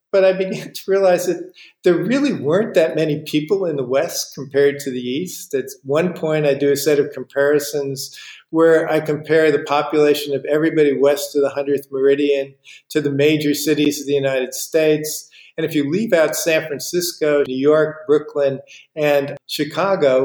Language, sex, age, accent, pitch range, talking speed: English, male, 50-69, American, 135-165 Hz, 180 wpm